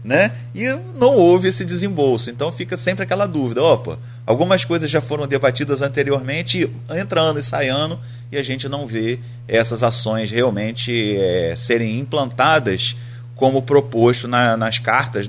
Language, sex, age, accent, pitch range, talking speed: Portuguese, male, 30-49, Brazilian, 115-135 Hz, 150 wpm